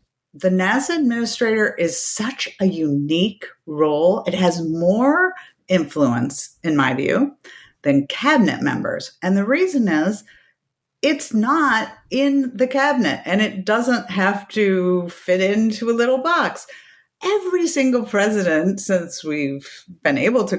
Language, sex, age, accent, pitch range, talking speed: English, female, 50-69, American, 175-260 Hz, 130 wpm